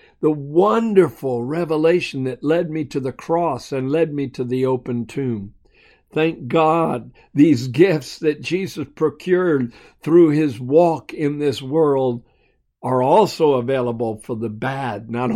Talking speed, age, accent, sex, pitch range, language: 140 wpm, 60-79, American, male, 130-180 Hz, English